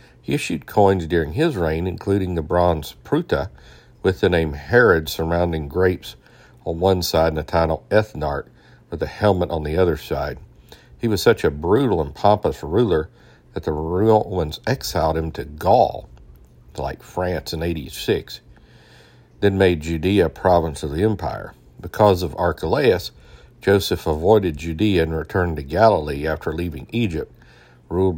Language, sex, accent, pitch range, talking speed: English, male, American, 80-95 Hz, 155 wpm